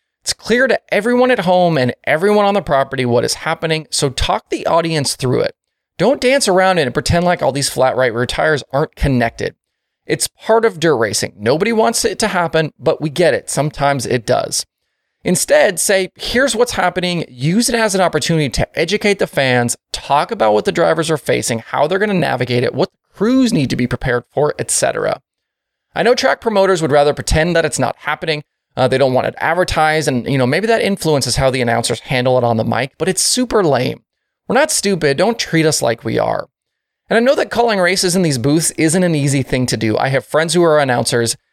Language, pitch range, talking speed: English, 135-200 Hz, 220 wpm